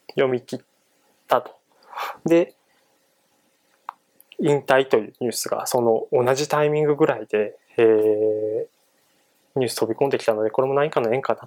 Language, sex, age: Japanese, male, 20-39